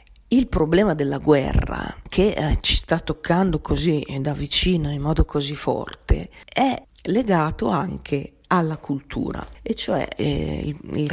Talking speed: 140 wpm